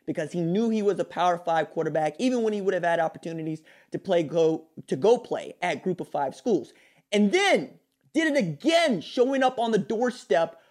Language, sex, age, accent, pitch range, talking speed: English, male, 30-49, American, 185-310 Hz, 205 wpm